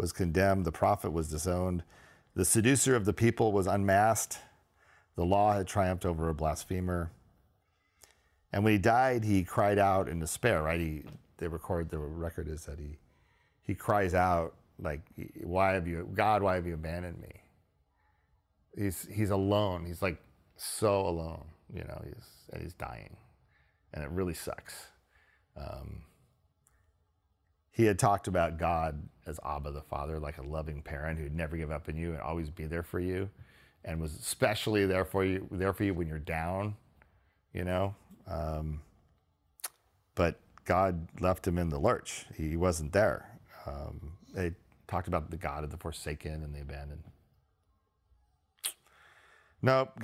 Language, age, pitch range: English, 40-59, 80-100 Hz